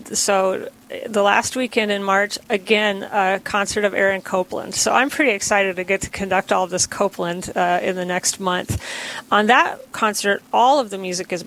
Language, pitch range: English, 185-220 Hz